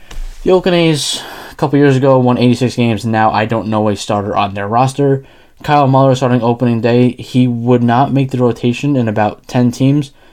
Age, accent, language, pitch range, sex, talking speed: 10-29, American, English, 115-140 Hz, male, 190 wpm